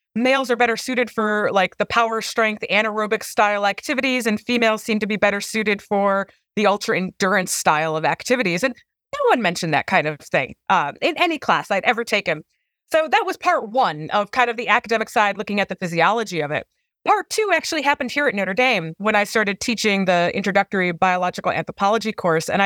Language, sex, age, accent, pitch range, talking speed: English, female, 30-49, American, 180-245 Hz, 200 wpm